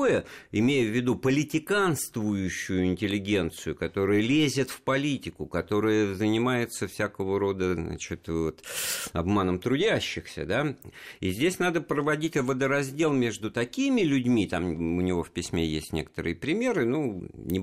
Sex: male